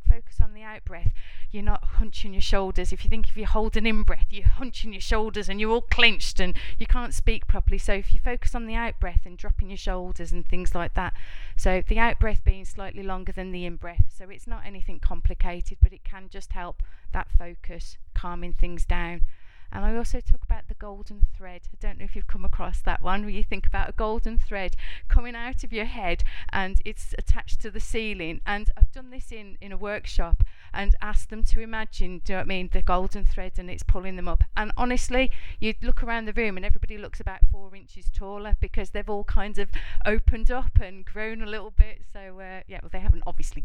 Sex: female